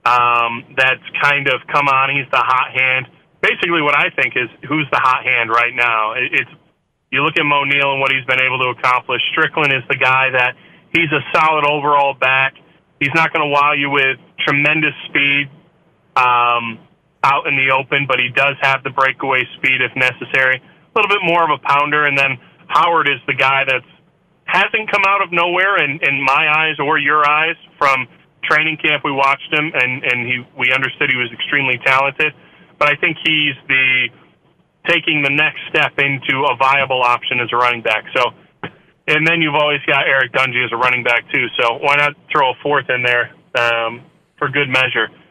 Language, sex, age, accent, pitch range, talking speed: English, male, 30-49, American, 130-155 Hz, 200 wpm